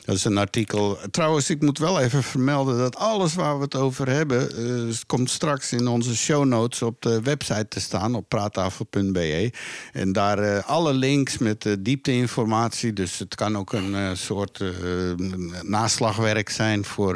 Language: Dutch